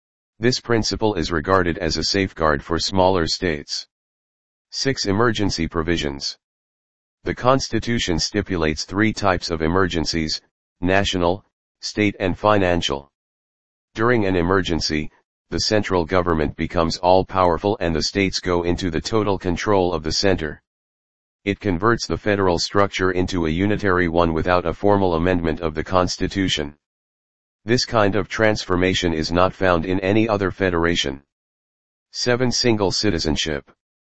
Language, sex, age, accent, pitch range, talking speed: English, male, 40-59, American, 80-100 Hz, 130 wpm